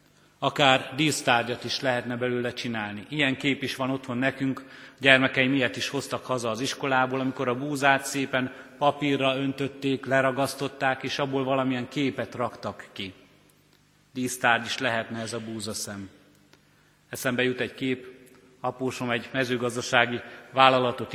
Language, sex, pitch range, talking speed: Hungarian, male, 120-140 Hz, 135 wpm